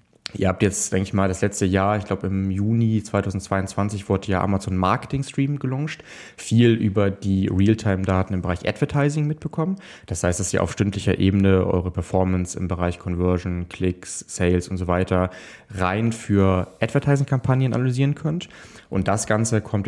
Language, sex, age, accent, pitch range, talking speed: German, male, 20-39, German, 90-105 Hz, 160 wpm